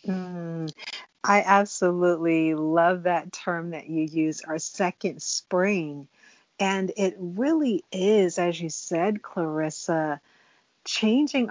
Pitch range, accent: 165-210 Hz, American